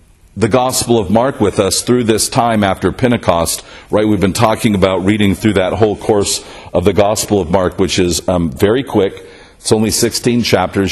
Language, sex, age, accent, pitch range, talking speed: English, male, 50-69, American, 95-125 Hz, 190 wpm